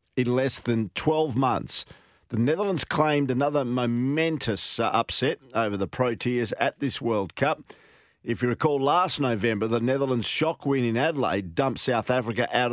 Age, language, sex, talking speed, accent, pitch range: 50-69, English, male, 160 wpm, Australian, 105-130 Hz